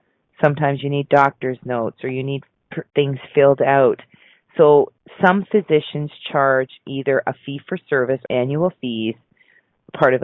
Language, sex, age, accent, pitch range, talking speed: English, female, 40-59, American, 135-175 Hz, 140 wpm